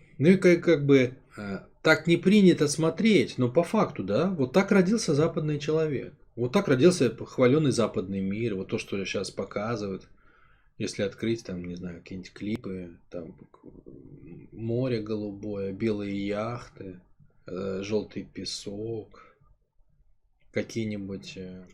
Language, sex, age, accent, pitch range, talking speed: Russian, male, 20-39, native, 100-130 Hz, 120 wpm